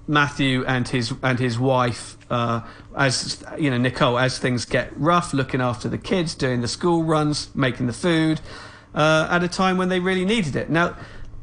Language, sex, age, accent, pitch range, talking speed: English, male, 40-59, British, 120-155 Hz, 190 wpm